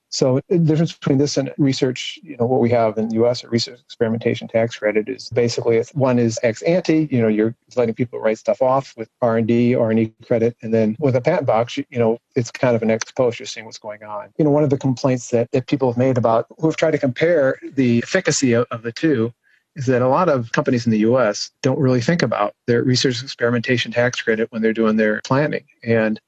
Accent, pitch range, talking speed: American, 115-135 Hz, 240 wpm